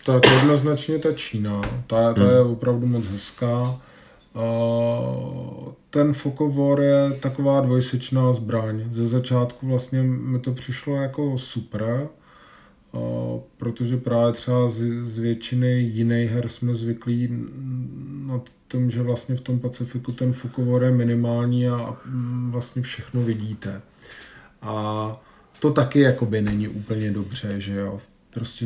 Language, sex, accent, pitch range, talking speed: Czech, male, native, 115-130 Hz, 125 wpm